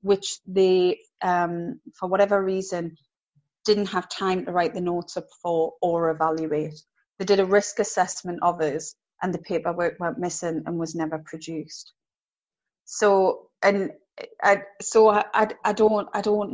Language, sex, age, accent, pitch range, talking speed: English, female, 30-49, British, 170-200 Hz, 150 wpm